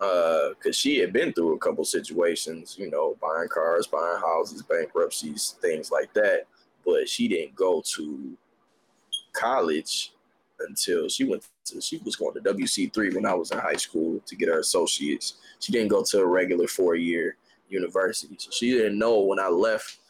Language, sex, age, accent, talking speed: English, male, 20-39, American, 175 wpm